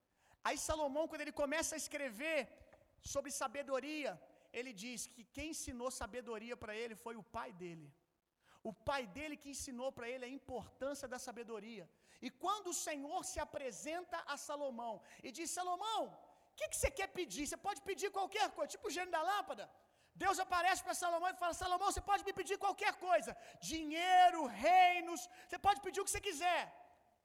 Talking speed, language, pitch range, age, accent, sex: 180 wpm, Gujarati, 240-345 Hz, 40-59, Brazilian, male